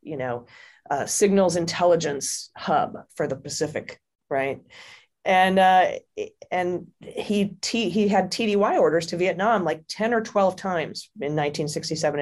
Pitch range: 150-190 Hz